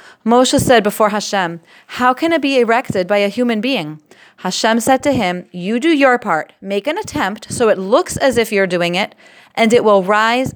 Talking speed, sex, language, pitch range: 205 wpm, female, English, 185-235 Hz